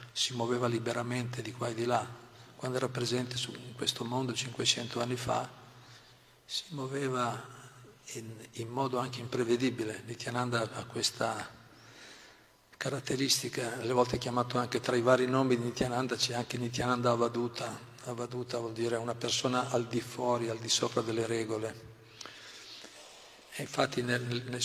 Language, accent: Italian, native